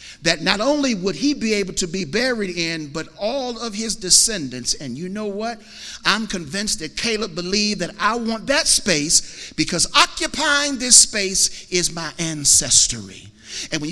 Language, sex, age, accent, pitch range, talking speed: English, male, 50-69, American, 175-260 Hz, 170 wpm